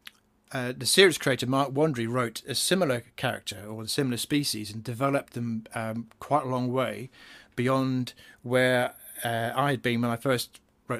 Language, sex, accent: English, male, British